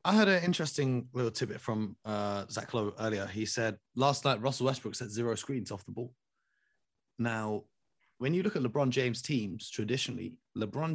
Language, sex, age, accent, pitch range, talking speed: English, male, 30-49, British, 110-135 Hz, 180 wpm